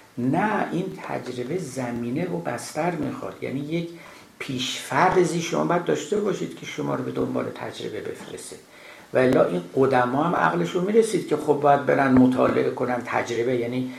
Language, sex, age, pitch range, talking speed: Persian, male, 60-79, 125-185 Hz, 155 wpm